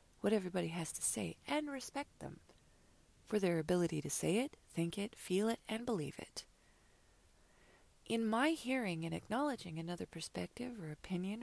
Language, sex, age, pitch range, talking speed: English, female, 30-49, 175-230 Hz, 160 wpm